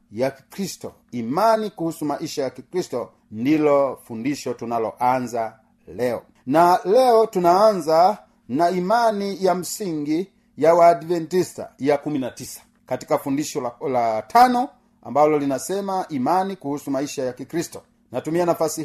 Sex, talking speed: male, 115 wpm